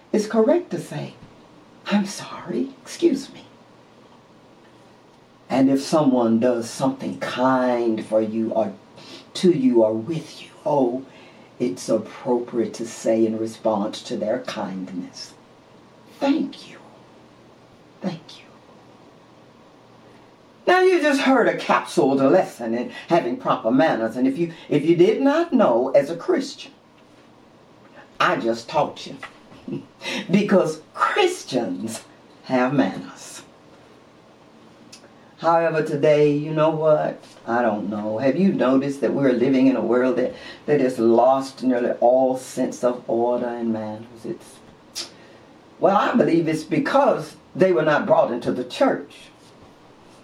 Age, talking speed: 50-69, 130 wpm